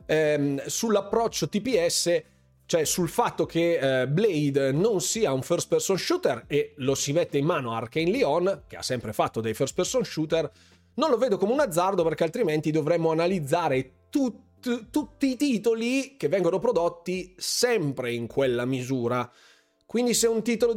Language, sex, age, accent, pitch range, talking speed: Italian, male, 30-49, native, 150-220 Hz, 160 wpm